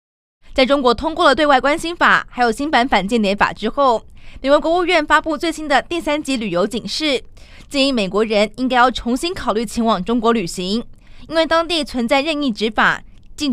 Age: 20-39